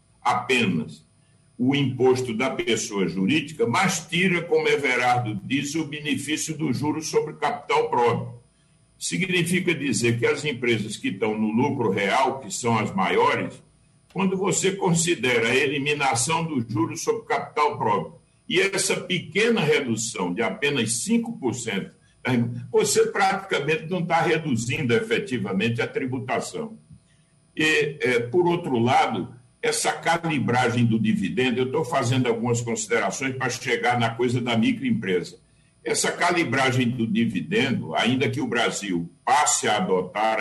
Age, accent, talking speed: 60-79, Brazilian, 130 wpm